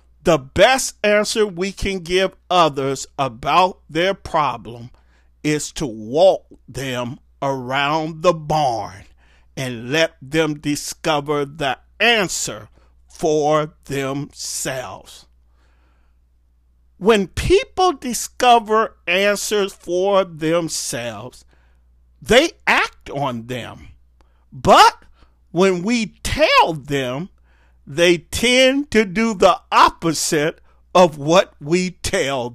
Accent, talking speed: American, 90 wpm